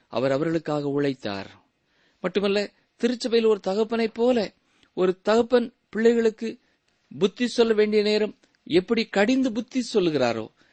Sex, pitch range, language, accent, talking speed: male, 135-220 Hz, Tamil, native, 105 wpm